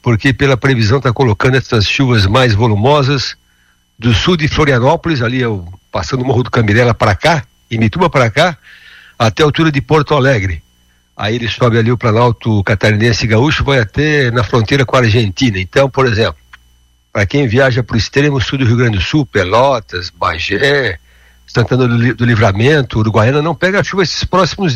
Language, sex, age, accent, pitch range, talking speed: Portuguese, male, 60-79, Brazilian, 110-140 Hz, 185 wpm